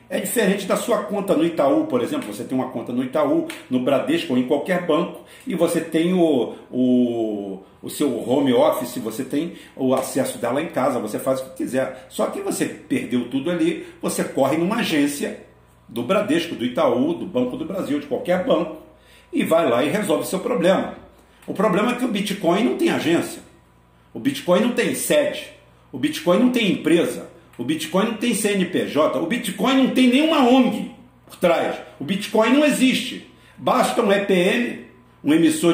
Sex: male